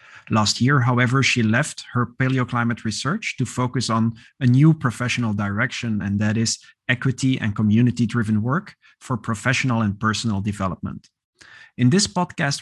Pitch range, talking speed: 110-130 Hz, 150 wpm